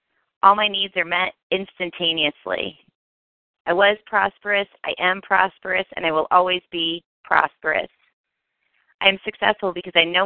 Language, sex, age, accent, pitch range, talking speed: English, female, 30-49, American, 165-195 Hz, 140 wpm